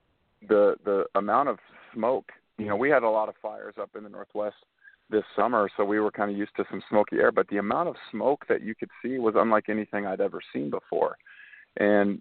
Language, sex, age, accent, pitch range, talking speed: English, male, 40-59, American, 100-115 Hz, 225 wpm